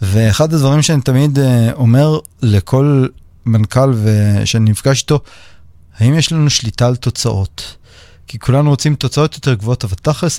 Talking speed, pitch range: 140 wpm, 105-135 Hz